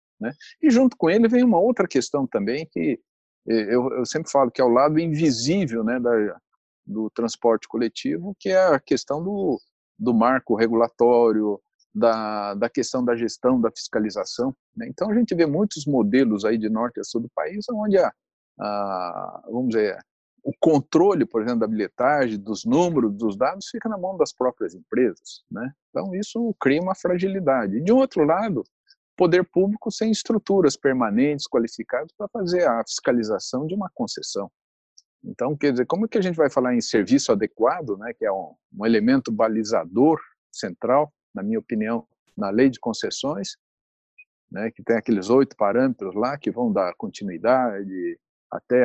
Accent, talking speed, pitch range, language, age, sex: Brazilian, 170 wpm, 120-200 Hz, Portuguese, 50-69, male